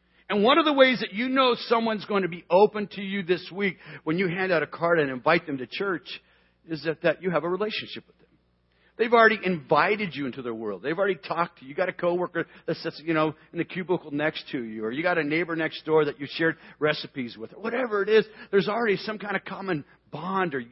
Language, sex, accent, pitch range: English, male, American, 110-180 Hz